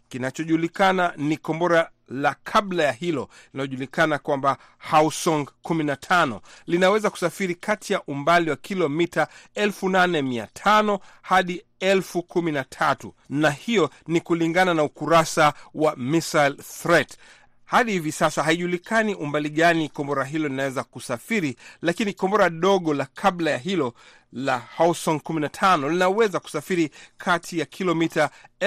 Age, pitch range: 40-59, 140-175 Hz